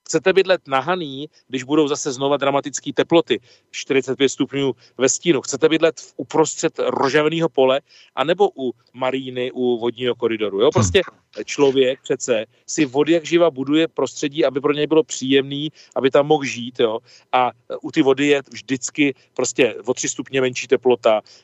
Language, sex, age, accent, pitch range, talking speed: Czech, male, 40-59, native, 130-160 Hz, 160 wpm